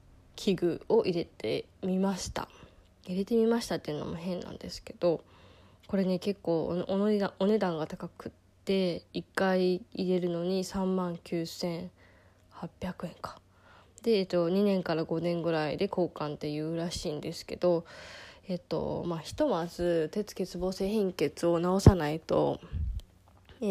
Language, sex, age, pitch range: Japanese, female, 20-39, 165-190 Hz